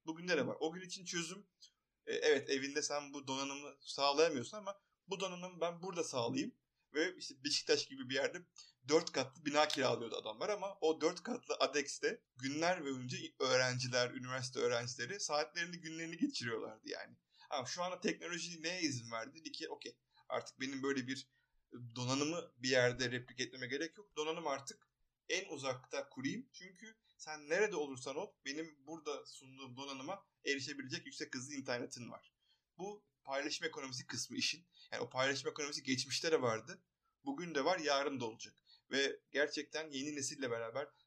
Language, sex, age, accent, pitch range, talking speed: Turkish, male, 30-49, native, 130-175 Hz, 155 wpm